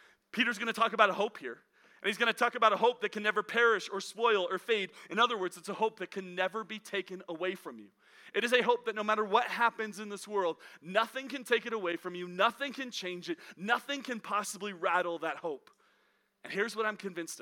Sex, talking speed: male, 240 wpm